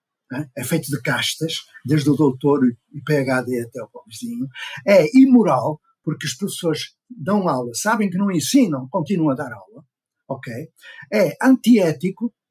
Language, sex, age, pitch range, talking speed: Portuguese, male, 50-69, 135-200 Hz, 150 wpm